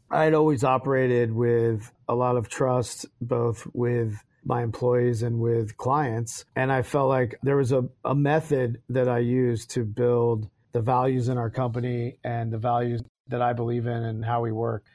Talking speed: 185 wpm